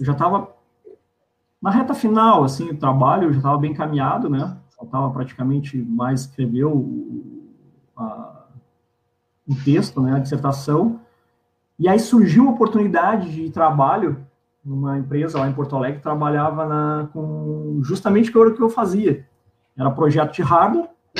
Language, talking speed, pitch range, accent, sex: Portuguese, 145 wpm, 140-185 Hz, Brazilian, male